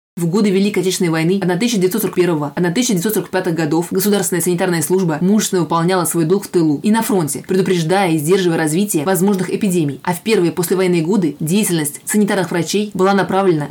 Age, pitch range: 20-39, 175-200 Hz